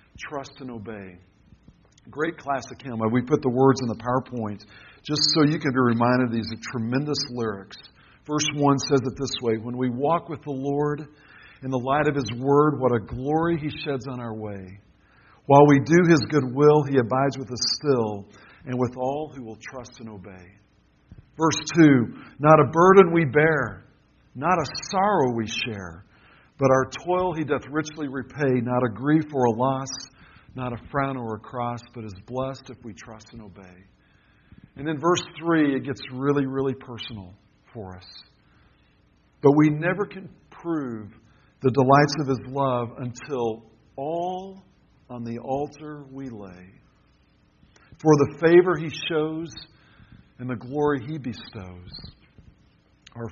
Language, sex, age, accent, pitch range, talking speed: English, male, 60-79, American, 115-150 Hz, 165 wpm